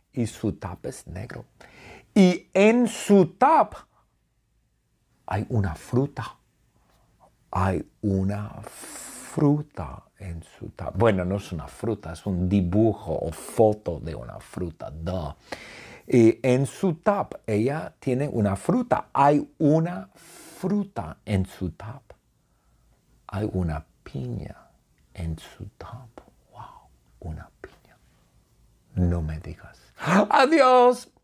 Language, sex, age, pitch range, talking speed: English, male, 50-69, 90-140 Hz, 110 wpm